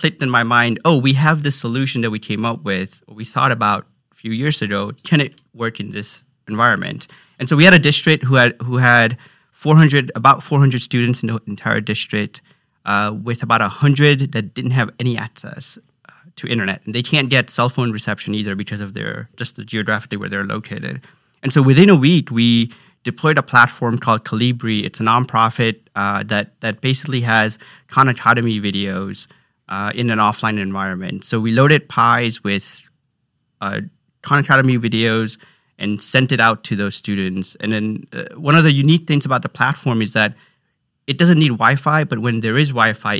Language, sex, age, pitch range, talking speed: English, male, 30-49, 110-140 Hz, 195 wpm